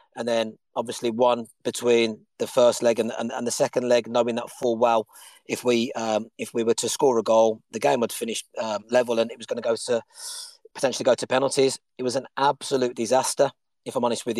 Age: 30-49